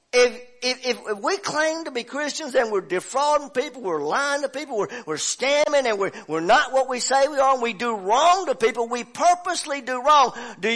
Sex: male